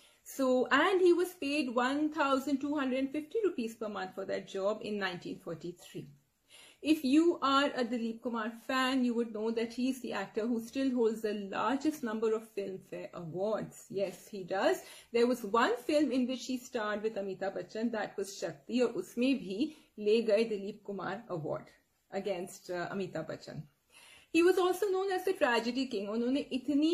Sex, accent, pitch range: female, Indian, 200-260 Hz